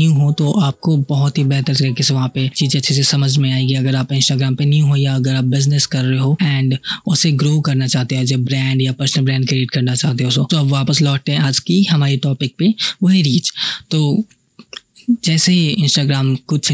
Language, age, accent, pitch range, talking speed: Hindi, 20-39, native, 135-155 Hz, 220 wpm